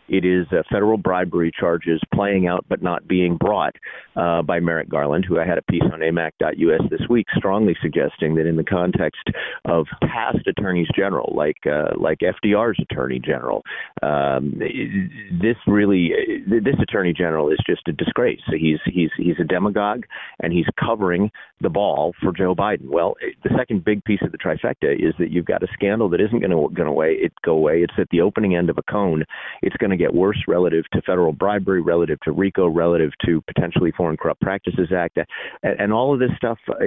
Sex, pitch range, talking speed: male, 85-115 Hz, 185 wpm